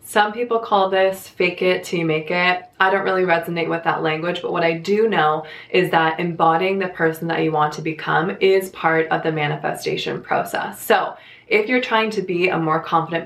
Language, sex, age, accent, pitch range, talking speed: English, female, 20-39, American, 160-200 Hz, 215 wpm